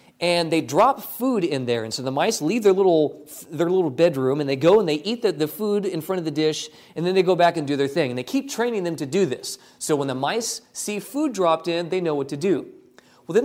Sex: male